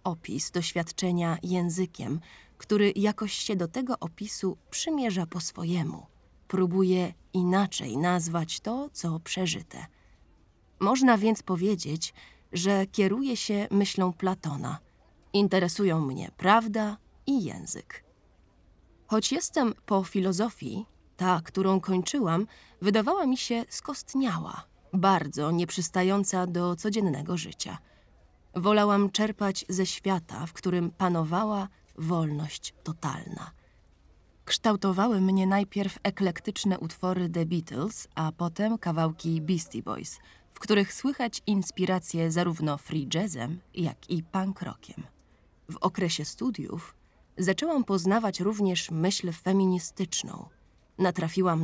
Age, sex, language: 20-39, female, Polish